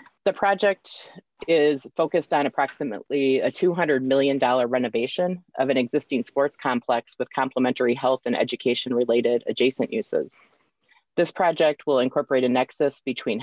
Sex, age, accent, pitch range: female, 30-49, American, 125-160 Hz